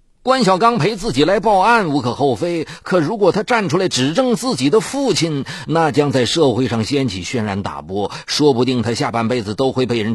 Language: Chinese